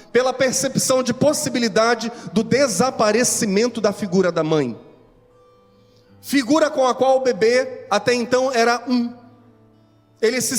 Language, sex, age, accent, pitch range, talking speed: Portuguese, male, 30-49, Brazilian, 170-245 Hz, 125 wpm